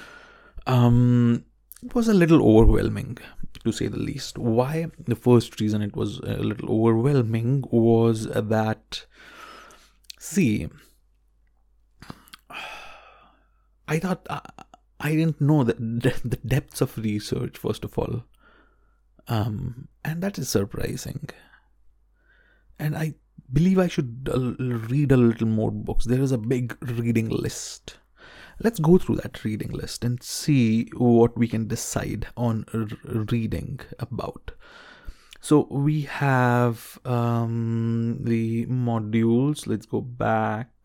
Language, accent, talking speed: English, Indian, 120 wpm